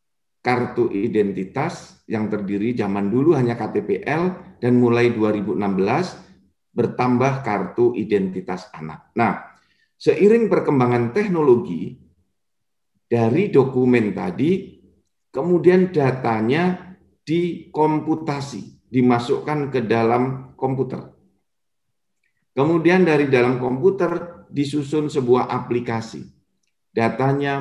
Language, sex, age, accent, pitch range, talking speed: Indonesian, male, 50-69, native, 110-140 Hz, 80 wpm